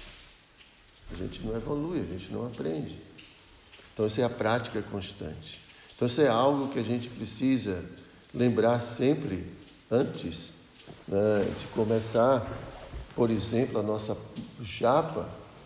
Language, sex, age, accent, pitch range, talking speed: Portuguese, male, 60-79, Brazilian, 105-135 Hz, 125 wpm